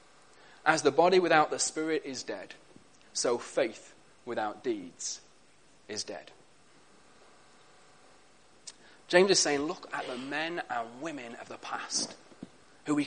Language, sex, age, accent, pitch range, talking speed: English, male, 30-49, British, 165-215 Hz, 130 wpm